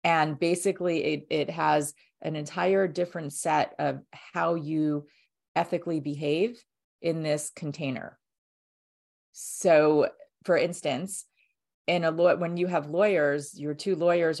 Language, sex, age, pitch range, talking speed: English, female, 30-49, 145-170 Hz, 125 wpm